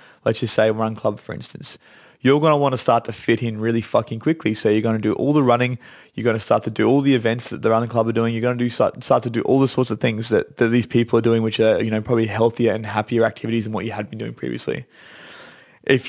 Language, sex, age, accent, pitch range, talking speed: English, male, 20-39, Australian, 110-120 Hz, 290 wpm